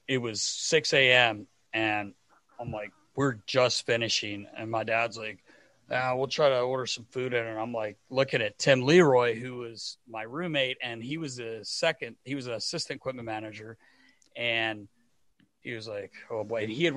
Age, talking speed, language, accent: 40-59, 185 wpm, English, American